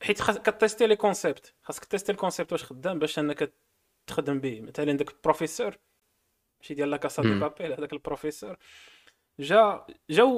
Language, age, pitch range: Arabic, 20-39, 135-200 Hz